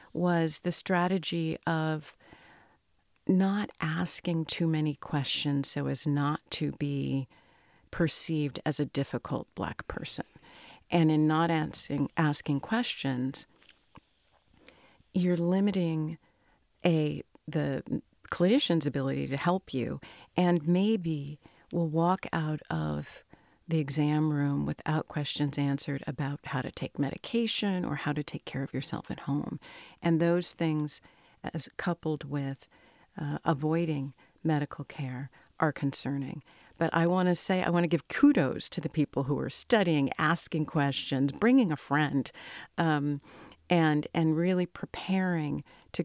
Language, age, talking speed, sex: English, 50-69, 130 wpm, female